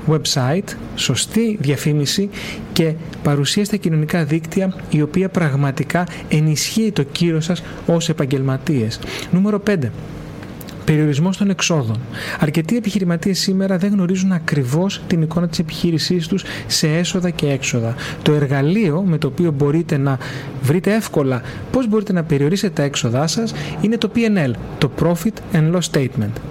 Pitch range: 145-185 Hz